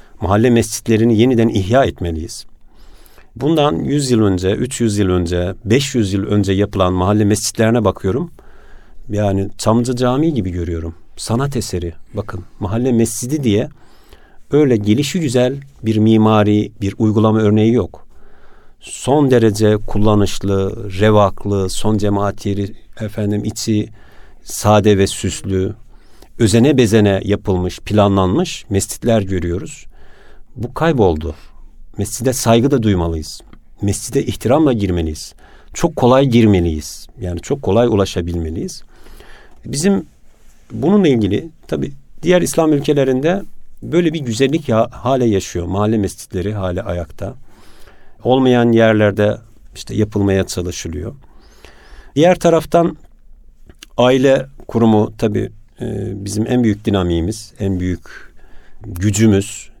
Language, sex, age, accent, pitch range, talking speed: Turkish, male, 50-69, native, 95-120 Hz, 105 wpm